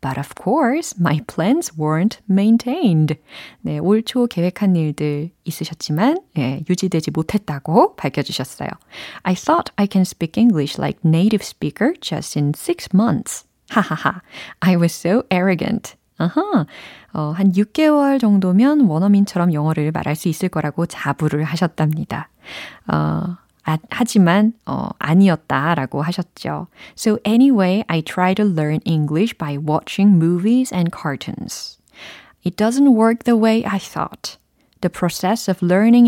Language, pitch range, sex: Korean, 155-225 Hz, female